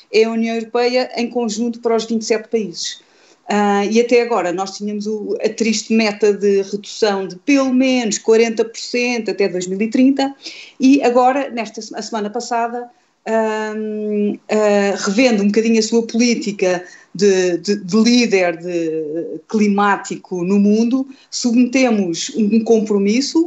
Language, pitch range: Portuguese, 200-245 Hz